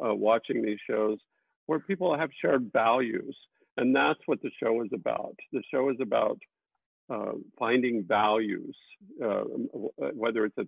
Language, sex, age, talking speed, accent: English, male, 50-69, 155 wpm, American